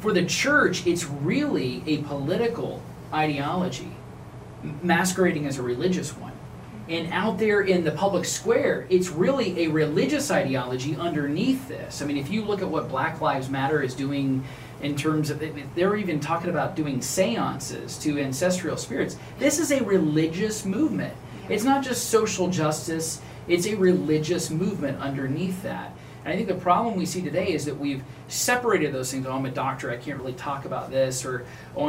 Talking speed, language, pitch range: 175 wpm, English, 135-180 Hz